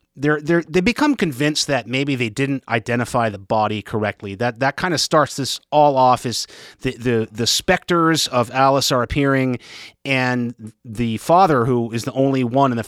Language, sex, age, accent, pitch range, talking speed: English, male, 30-49, American, 115-145 Hz, 185 wpm